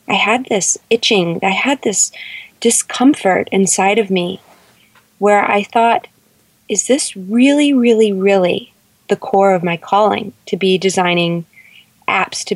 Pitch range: 185-220 Hz